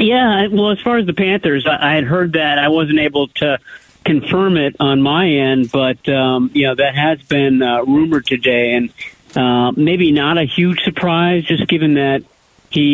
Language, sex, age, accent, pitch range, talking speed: English, male, 50-69, American, 120-150 Hz, 190 wpm